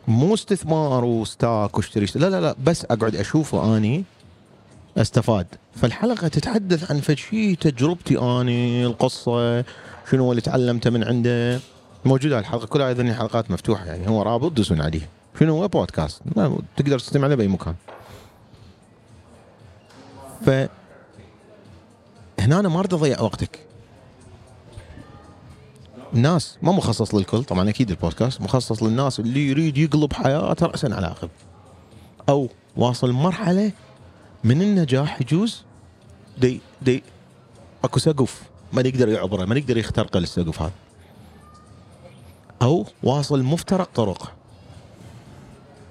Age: 30-49